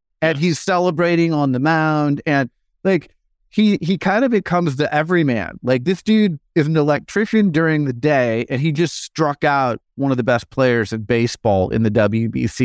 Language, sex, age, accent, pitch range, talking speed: English, male, 30-49, American, 115-155 Hz, 185 wpm